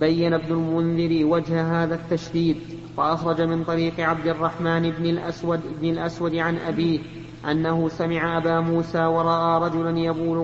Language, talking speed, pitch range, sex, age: Arabic, 140 wpm, 165-170 Hz, male, 30-49